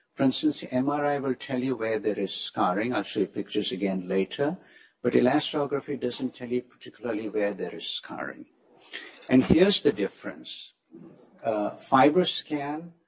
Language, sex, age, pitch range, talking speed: English, male, 60-79, 110-145 Hz, 150 wpm